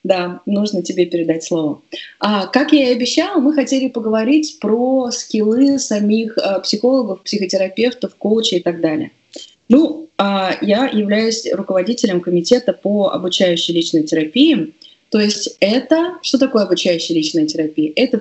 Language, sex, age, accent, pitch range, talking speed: Russian, female, 20-39, native, 180-275 Hz, 130 wpm